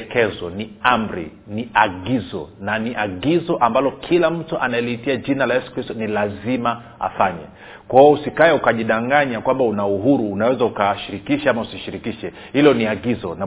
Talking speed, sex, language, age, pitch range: 150 wpm, male, Swahili, 40-59, 110-140 Hz